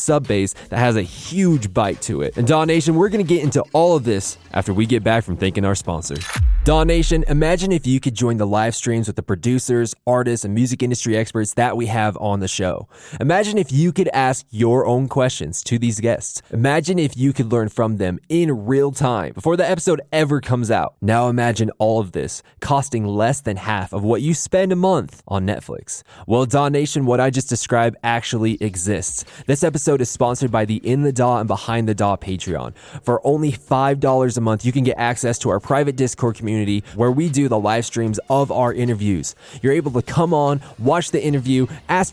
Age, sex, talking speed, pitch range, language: 20-39, male, 210 wpm, 110-140 Hz, English